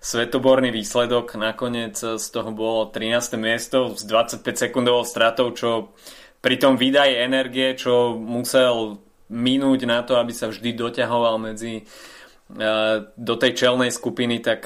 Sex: male